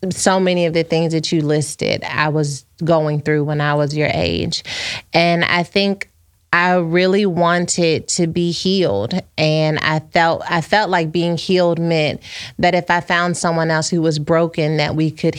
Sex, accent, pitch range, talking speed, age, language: female, American, 160-185 Hz, 185 wpm, 30-49, English